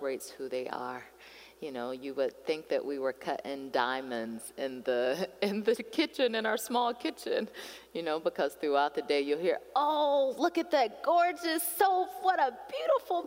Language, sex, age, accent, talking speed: English, female, 30-49, American, 175 wpm